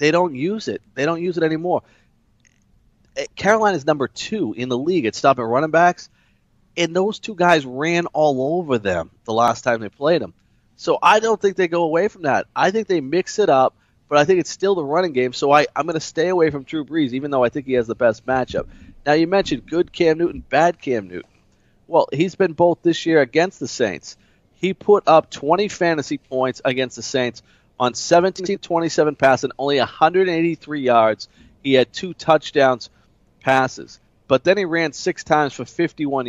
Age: 30-49